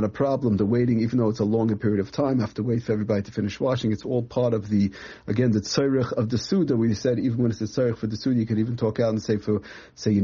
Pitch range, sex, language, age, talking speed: 105-130 Hz, male, English, 40-59, 300 wpm